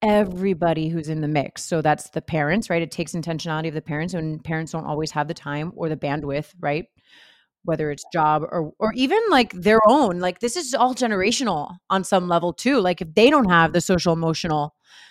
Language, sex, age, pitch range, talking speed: English, female, 30-49, 170-220 Hz, 210 wpm